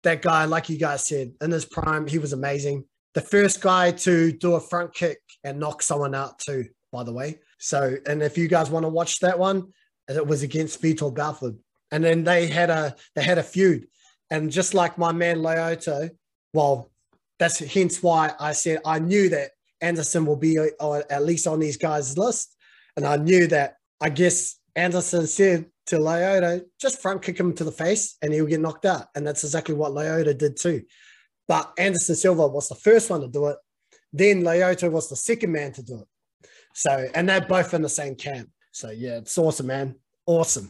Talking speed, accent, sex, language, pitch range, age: 205 wpm, Australian, male, English, 145-175 Hz, 20-39